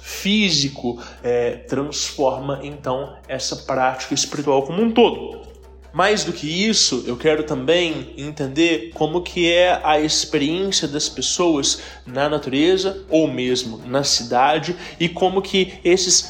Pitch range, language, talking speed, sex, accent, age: 145-185 Hz, English, 125 wpm, male, Brazilian, 20-39